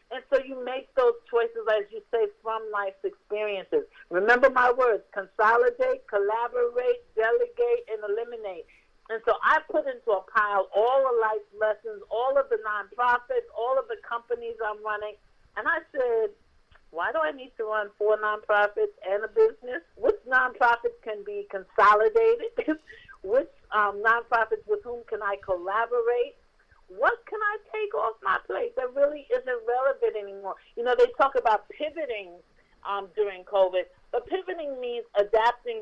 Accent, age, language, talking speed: American, 50-69, English, 150 wpm